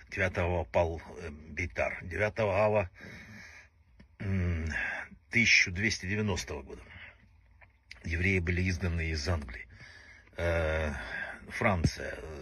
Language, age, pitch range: Russian, 60-79, 85-95 Hz